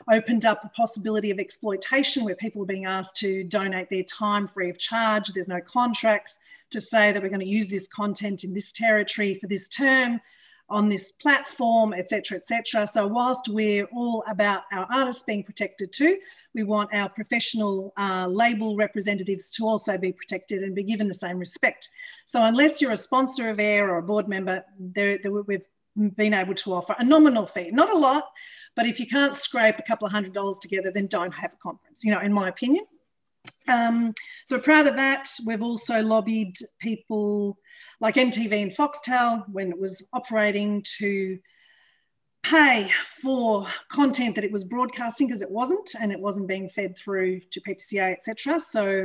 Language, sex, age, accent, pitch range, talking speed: English, female, 40-59, Australian, 195-245 Hz, 185 wpm